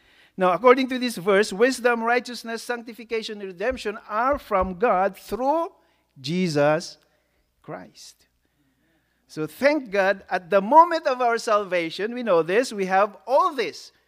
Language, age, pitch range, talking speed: English, 50-69, 130-210 Hz, 135 wpm